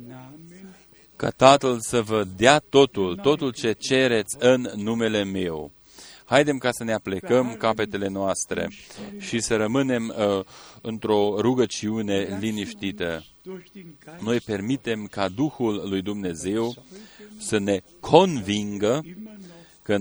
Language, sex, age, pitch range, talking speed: Romanian, male, 40-59, 105-135 Hz, 110 wpm